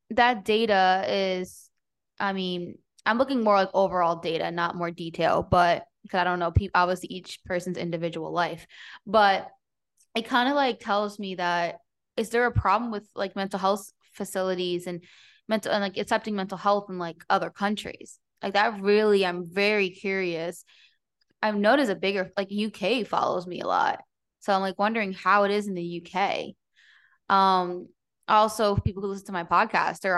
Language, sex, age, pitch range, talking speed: English, female, 20-39, 180-215 Hz, 175 wpm